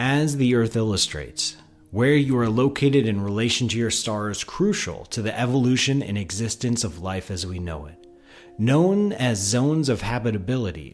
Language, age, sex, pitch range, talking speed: English, 30-49, male, 95-135 Hz, 170 wpm